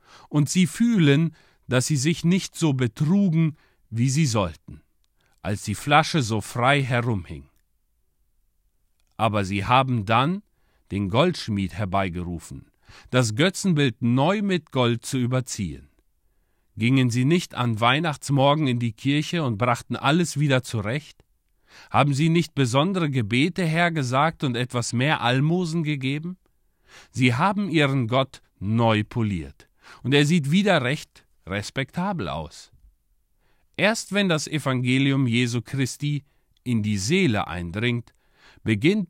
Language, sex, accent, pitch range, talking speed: German, male, German, 110-155 Hz, 125 wpm